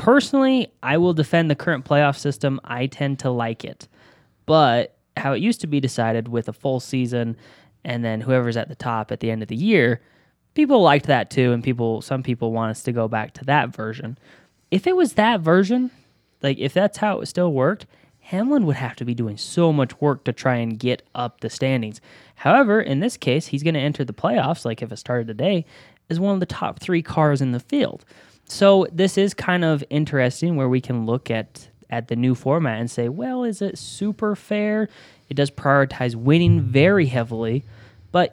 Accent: American